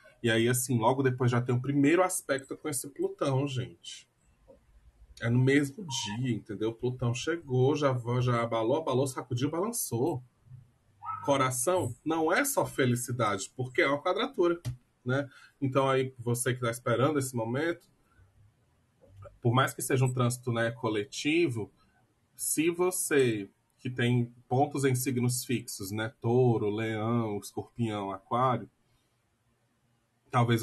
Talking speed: 130 wpm